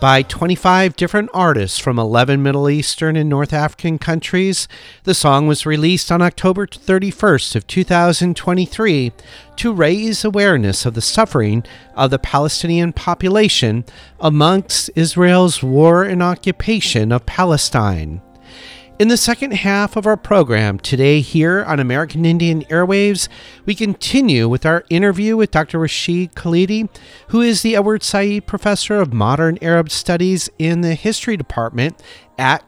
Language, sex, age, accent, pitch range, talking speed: English, male, 40-59, American, 140-190 Hz, 140 wpm